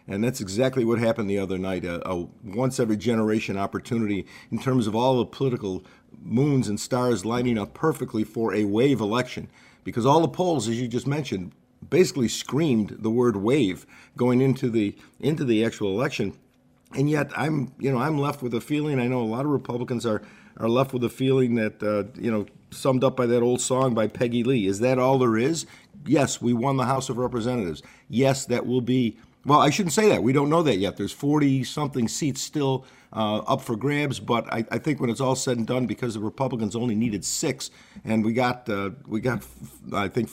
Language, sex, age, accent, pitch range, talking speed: English, male, 50-69, American, 110-135 Hz, 210 wpm